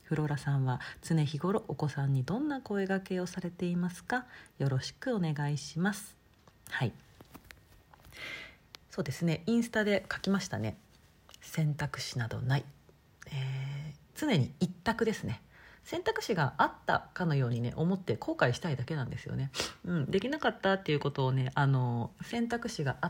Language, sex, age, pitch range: Japanese, female, 40-59, 135-205 Hz